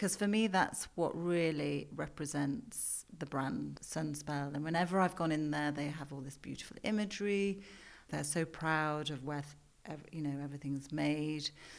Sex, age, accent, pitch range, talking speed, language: female, 40-59, British, 145-165 Hz, 160 wpm, English